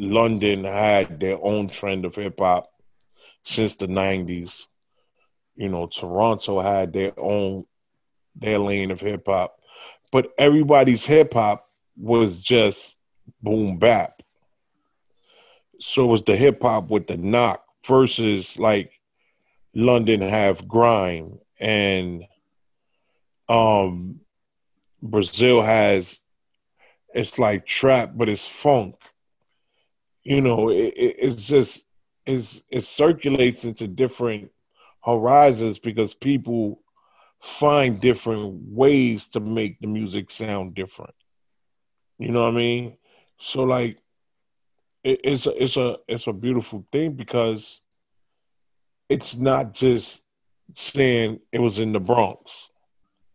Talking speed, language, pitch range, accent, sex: 110 wpm, English, 100-120 Hz, American, male